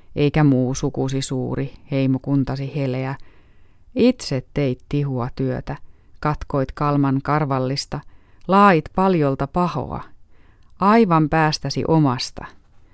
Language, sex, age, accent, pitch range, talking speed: Finnish, female, 30-49, native, 110-155 Hz, 90 wpm